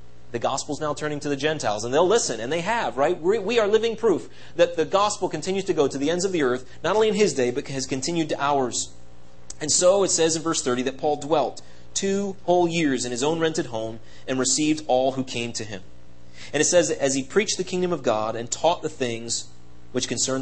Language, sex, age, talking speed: English, male, 30-49, 245 wpm